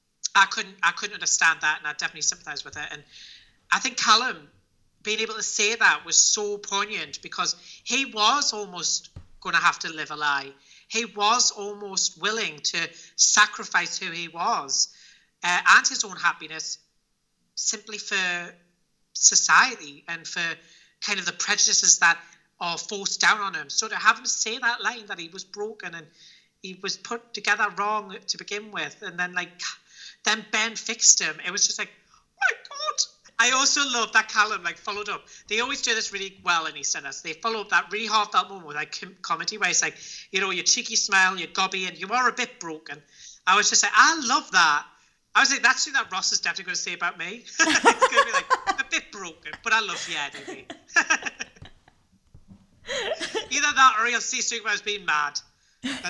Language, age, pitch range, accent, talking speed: English, 30-49, 170-225 Hz, British, 195 wpm